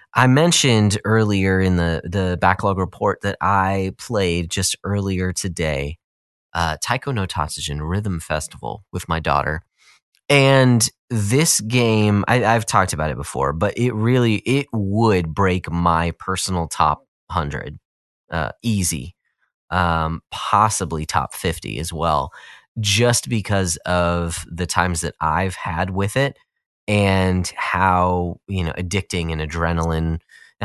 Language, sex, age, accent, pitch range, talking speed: English, male, 30-49, American, 85-110 Hz, 125 wpm